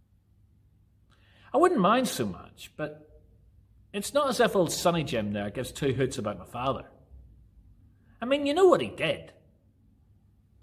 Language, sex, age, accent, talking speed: English, male, 40-59, British, 160 wpm